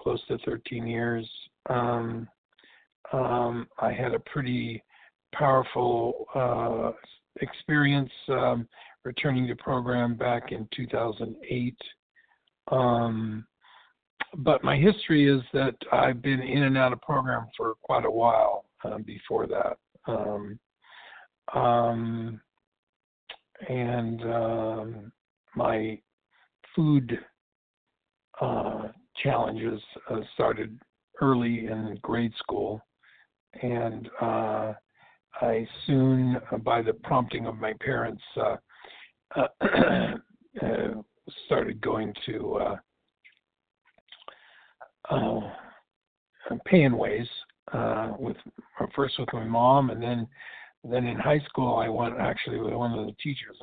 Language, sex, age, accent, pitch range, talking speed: English, male, 60-79, American, 115-130 Hz, 105 wpm